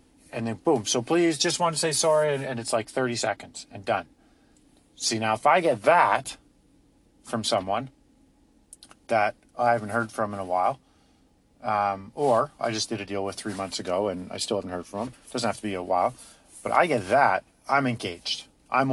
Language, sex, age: English, male, 40-59